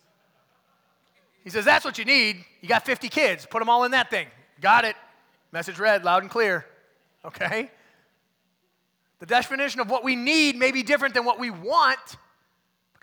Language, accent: English, American